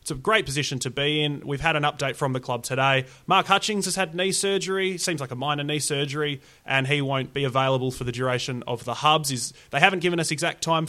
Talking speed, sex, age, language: 250 wpm, male, 30-49, English